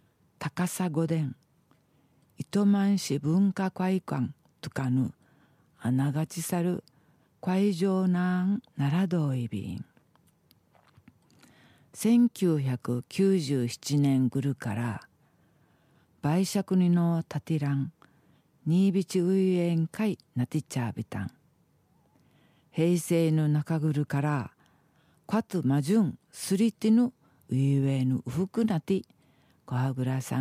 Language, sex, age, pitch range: Japanese, female, 50-69, 140-185 Hz